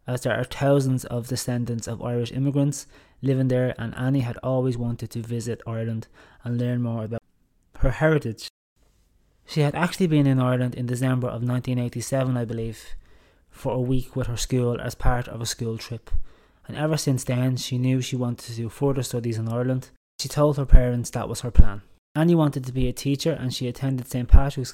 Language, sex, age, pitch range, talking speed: English, male, 20-39, 115-135 Hz, 200 wpm